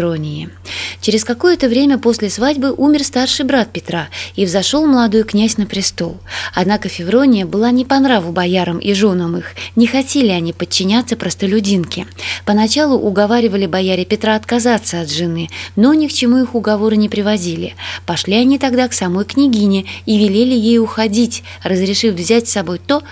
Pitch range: 185-245 Hz